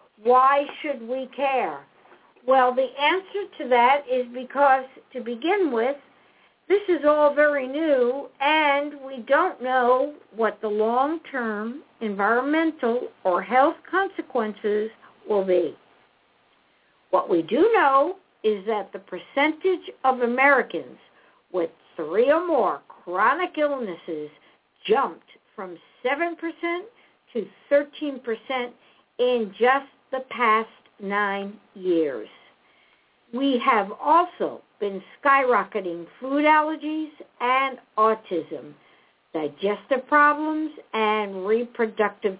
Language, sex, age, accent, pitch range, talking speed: English, female, 60-79, American, 210-295 Hz, 100 wpm